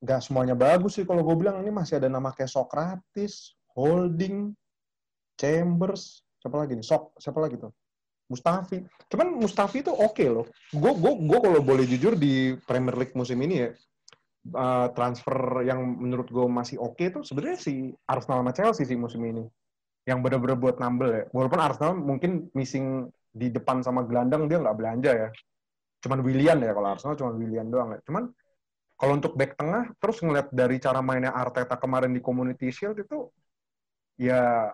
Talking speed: 170 wpm